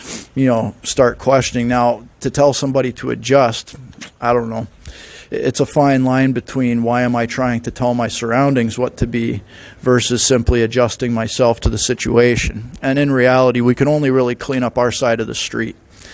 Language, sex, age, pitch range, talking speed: English, male, 40-59, 115-130 Hz, 185 wpm